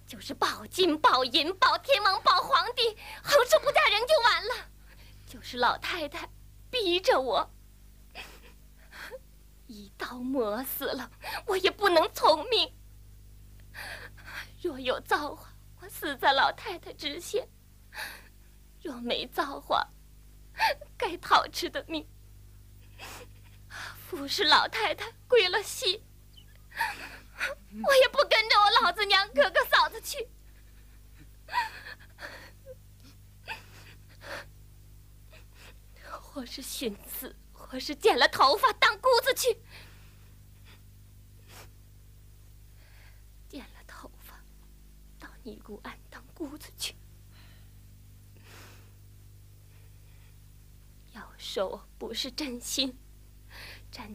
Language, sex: Chinese, female